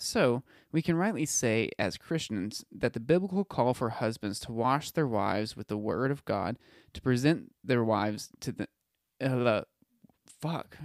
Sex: male